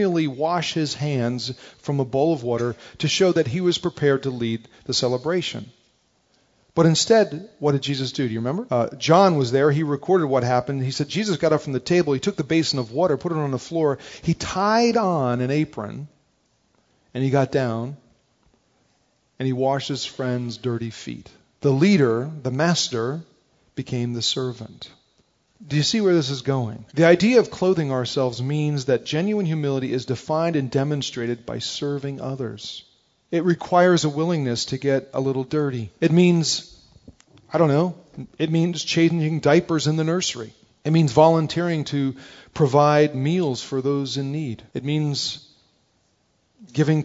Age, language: 40-59, English